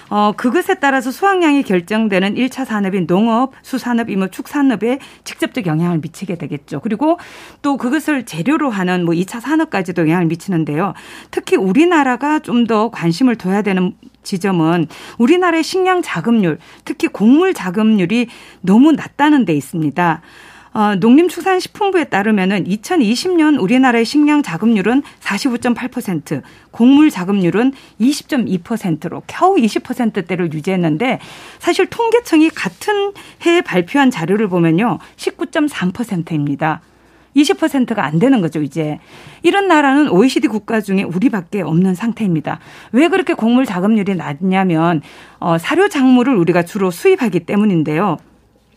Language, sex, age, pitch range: Korean, female, 40-59, 185-295 Hz